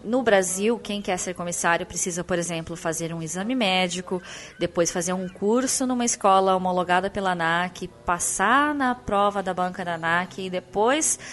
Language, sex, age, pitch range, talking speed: Portuguese, female, 20-39, 180-245 Hz, 165 wpm